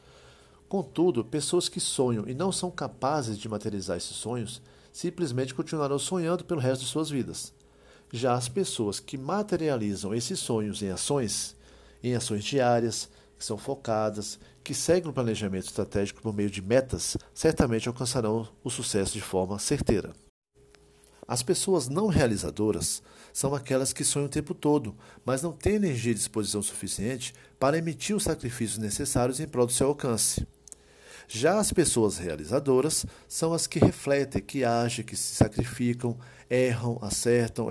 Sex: male